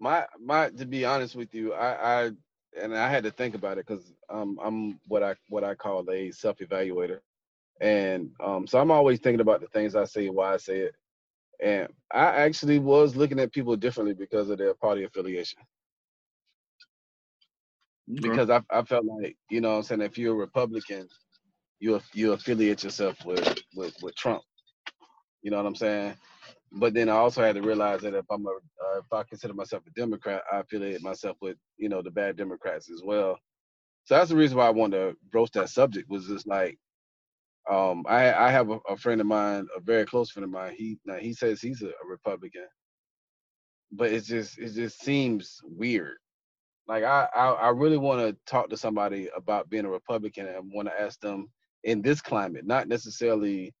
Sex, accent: male, American